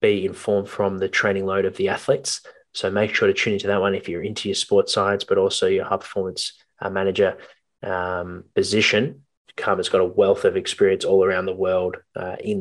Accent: Australian